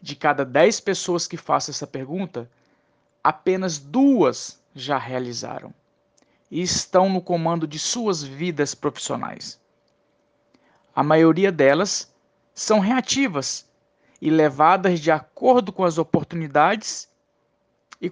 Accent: Brazilian